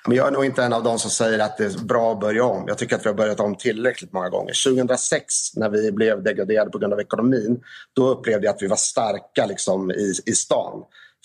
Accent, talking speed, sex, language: native, 255 wpm, male, Swedish